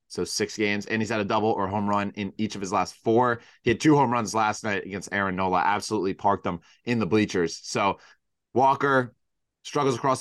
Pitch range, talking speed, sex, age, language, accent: 100-115 Hz, 215 wpm, male, 20-39, English, American